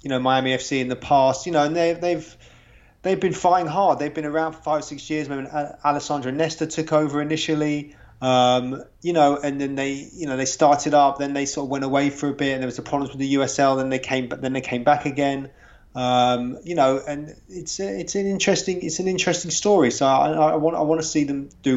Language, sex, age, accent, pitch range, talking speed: English, male, 20-39, British, 130-150 Hz, 245 wpm